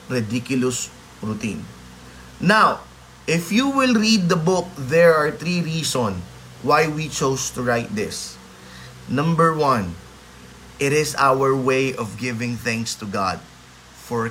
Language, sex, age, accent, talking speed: Filipino, male, 20-39, native, 130 wpm